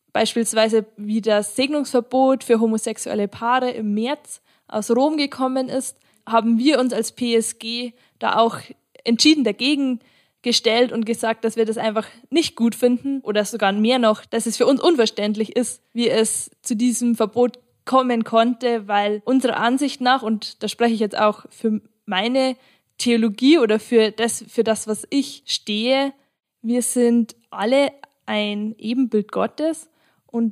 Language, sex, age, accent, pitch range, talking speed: German, female, 20-39, German, 220-255 Hz, 150 wpm